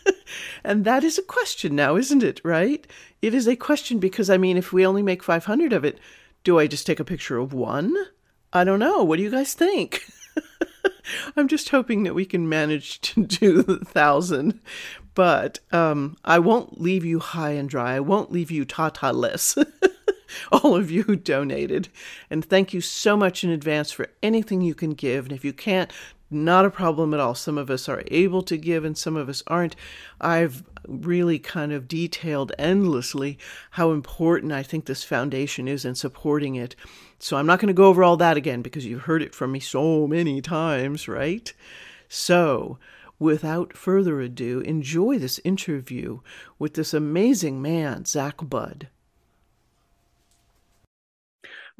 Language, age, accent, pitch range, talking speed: English, 50-69, American, 145-195 Hz, 175 wpm